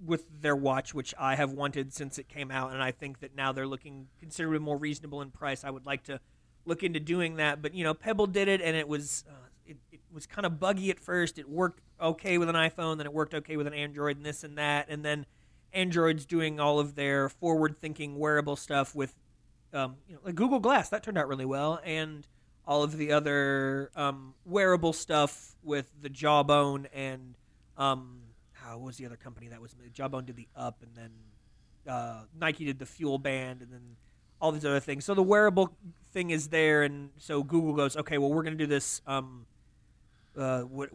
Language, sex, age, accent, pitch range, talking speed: English, male, 30-49, American, 130-155 Hz, 215 wpm